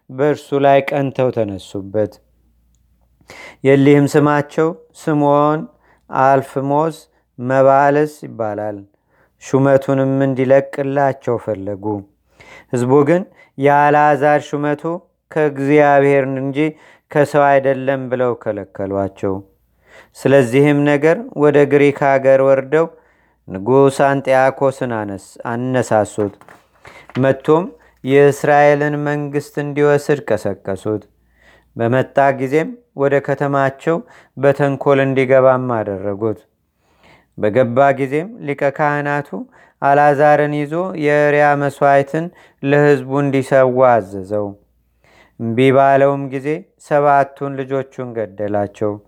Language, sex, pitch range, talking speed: Amharic, male, 125-145 Hz, 70 wpm